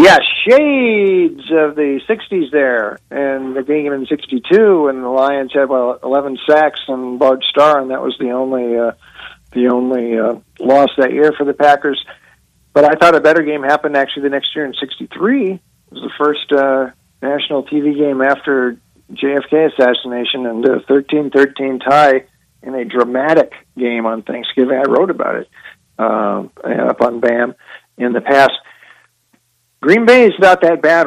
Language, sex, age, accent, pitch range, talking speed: English, male, 50-69, American, 130-155 Hz, 170 wpm